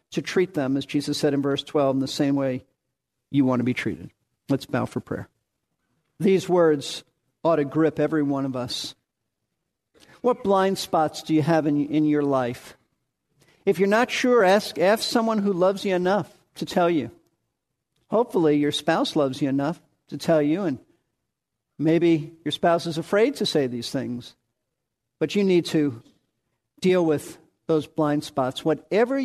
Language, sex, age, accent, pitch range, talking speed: English, male, 50-69, American, 140-175 Hz, 170 wpm